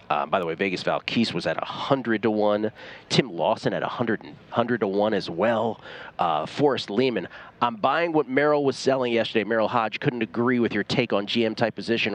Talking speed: 200 wpm